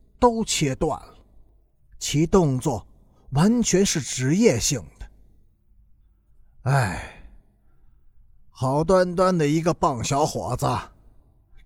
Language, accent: Chinese, native